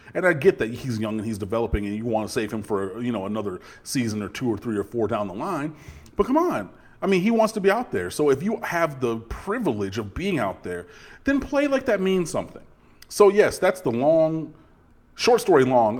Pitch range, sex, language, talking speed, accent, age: 110-155 Hz, male, English, 240 wpm, American, 30-49